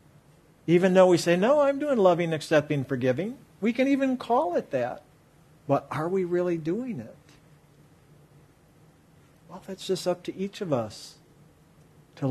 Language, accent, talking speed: English, American, 150 wpm